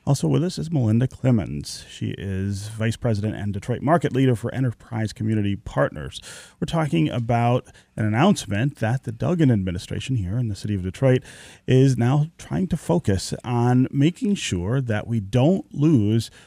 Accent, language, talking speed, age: American, English, 165 wpm, 30-49